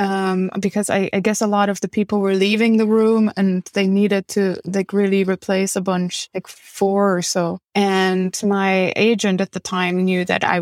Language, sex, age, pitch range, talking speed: English, female, 20-39, 180-200 Hz, 205 wpm